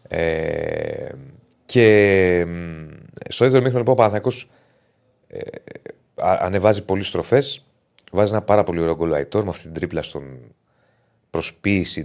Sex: male